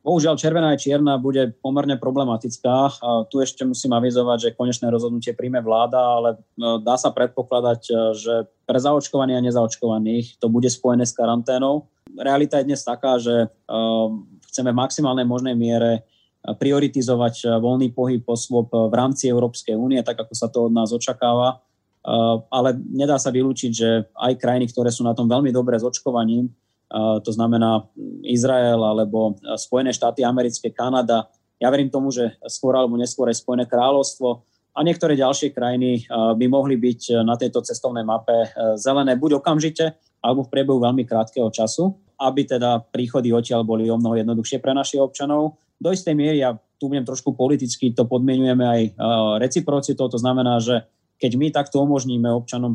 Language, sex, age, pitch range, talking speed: Slovak, male, 20-39, 115-130 Hz, 160 wpm